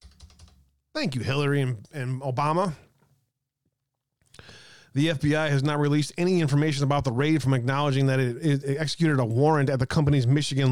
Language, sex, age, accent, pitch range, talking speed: English, male, 30-49, American, 130-155 Hz, 155 wpm